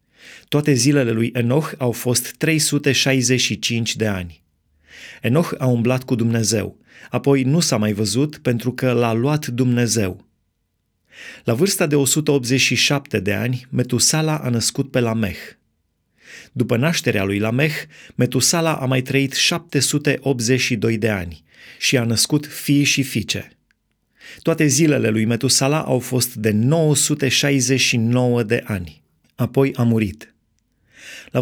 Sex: male